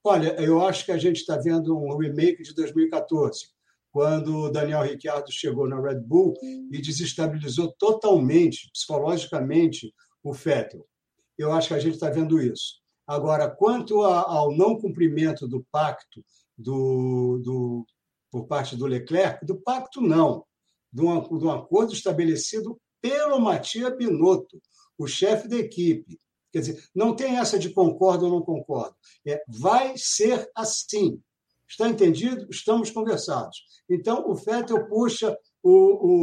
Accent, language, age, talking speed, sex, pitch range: Brazilian, Portuguese, 60-79, 145 wpm, male, 150-220 Hz